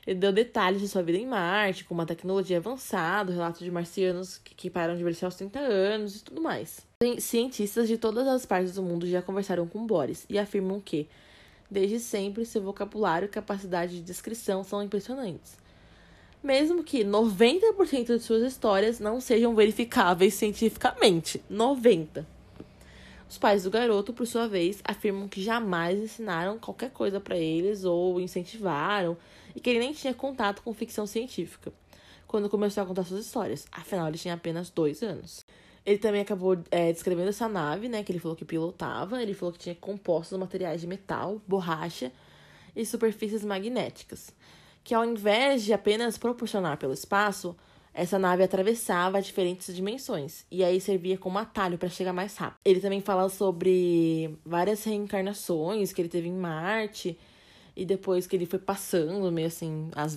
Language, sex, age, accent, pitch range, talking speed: Portuguese, female, 20-39, Brazilian, 175-220 Hz, 165 wpm